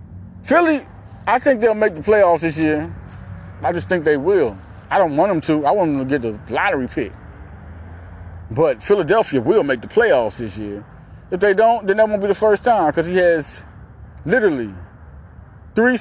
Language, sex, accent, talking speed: English, male, American, 185 wpm